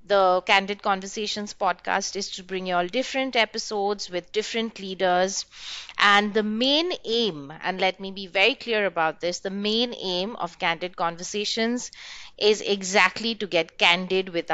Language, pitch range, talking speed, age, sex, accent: English, 185-240 Hz, 155 wpm, 30-49, female, Indian